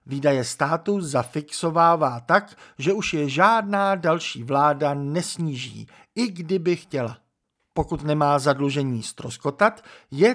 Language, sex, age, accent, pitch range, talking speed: Czech, male, 50-69, native, 140-190 Hz, 110 wpm